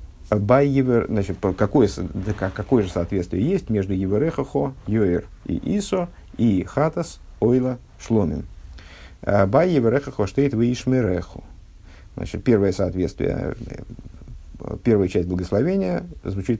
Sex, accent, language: male, native, Russian